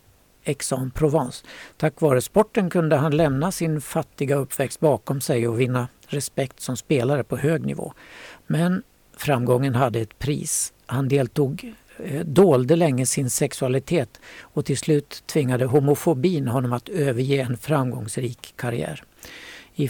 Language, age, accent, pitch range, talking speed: Swedish, 60-79, native, 130-160 Hz, 135 wpm